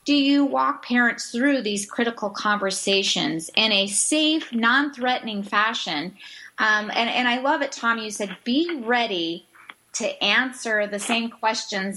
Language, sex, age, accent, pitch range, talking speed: English, female, 30-49, American, 180-235 Hz, 145 wpm